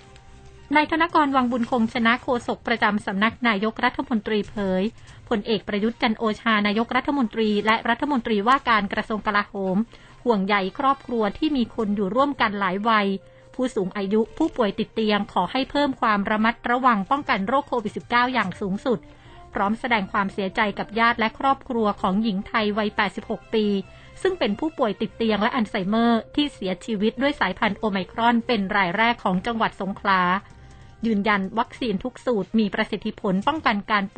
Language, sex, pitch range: Thai, female, 205-245 Hz